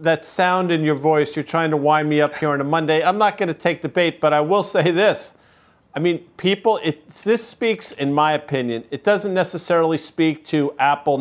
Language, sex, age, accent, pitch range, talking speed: English, male, 50-69, American, 150-175 Hz, 220 wpm